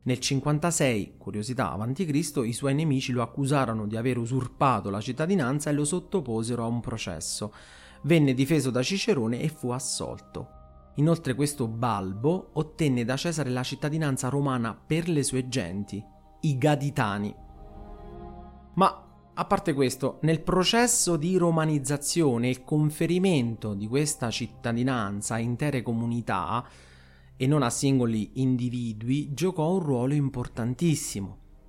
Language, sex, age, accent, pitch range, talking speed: Italian, male, 30-49, native, 120-155 Hz, 125 wpm